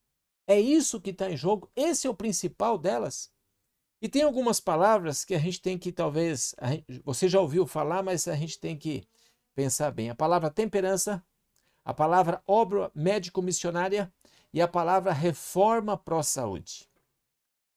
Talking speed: 150 wpm